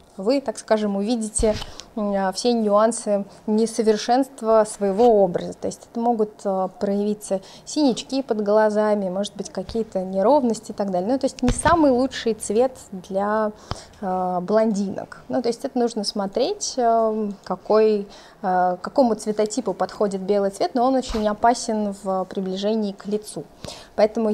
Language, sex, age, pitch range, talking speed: Russian, female, 20-39, 200-240 Hz, 135 wpm